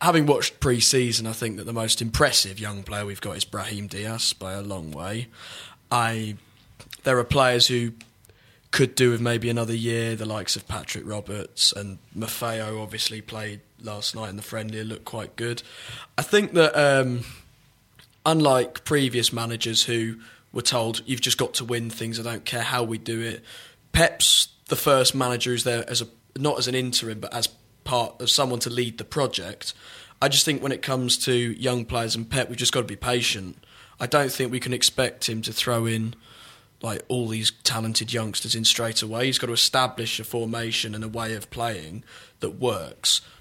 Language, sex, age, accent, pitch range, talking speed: English, male, 20-39, British, 110-125 Hz, 190 wpm